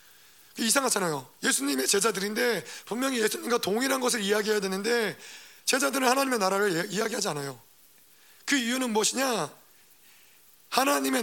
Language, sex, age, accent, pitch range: Korean, male, 30-49, native, 195-245 Hz